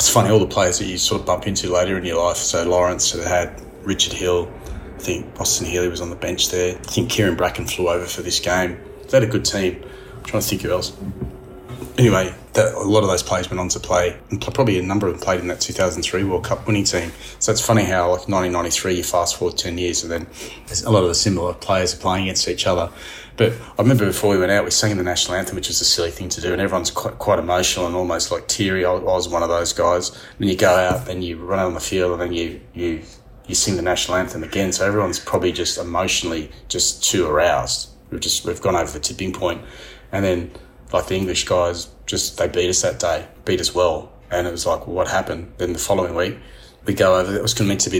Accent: Australian